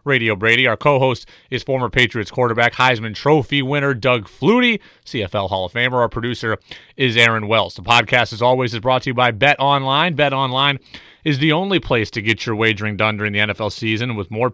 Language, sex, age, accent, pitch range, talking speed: English, male, 30-49, American, 120-160 Hz, 205 wpm